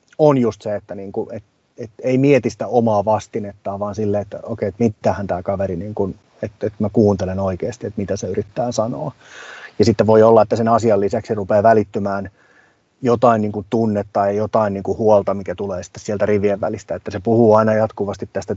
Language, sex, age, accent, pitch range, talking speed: Finnish, male, 30-49, native, 100-115 Hz, 210 wpm